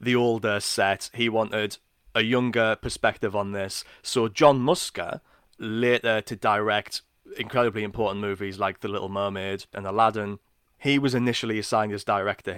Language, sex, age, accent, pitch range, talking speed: English, male, 20-39, British, 100-120 Hz, 150 wpm